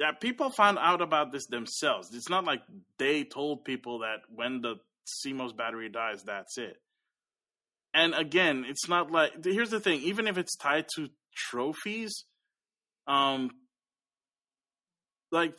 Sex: male